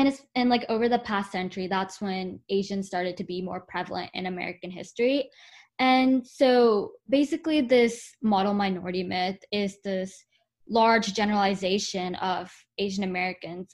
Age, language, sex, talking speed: 10-29, English, female, 135 wpm